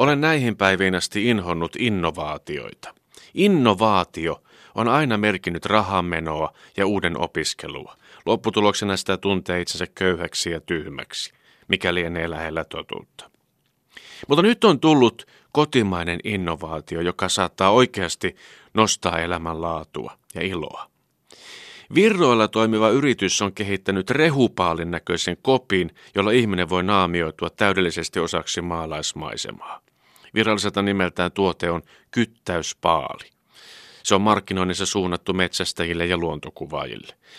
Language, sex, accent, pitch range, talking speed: Finnish, male, native, 85-110 Hz, 105 wpm